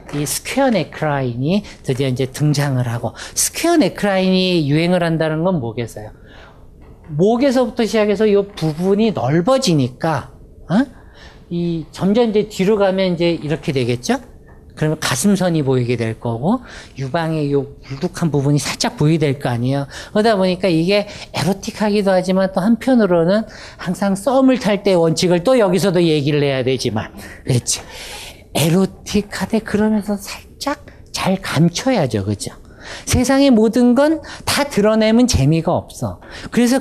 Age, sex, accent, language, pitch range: 50-69, male, native, Korean, 140-220 Hz